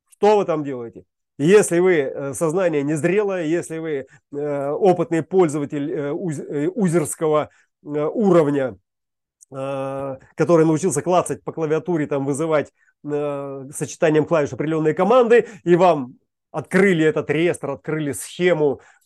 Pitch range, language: 150-185 Hz, Russian